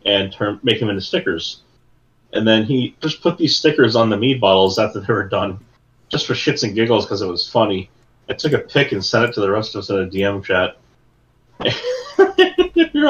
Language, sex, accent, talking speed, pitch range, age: English, male, American, 215 wpm, 105-150 Hz, 30-49